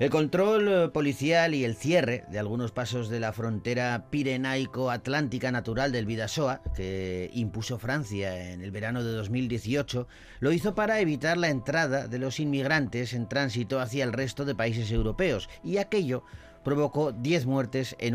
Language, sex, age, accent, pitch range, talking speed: Spanish, male, 40-59, Spanish, 110-140 Hz, 155 wpm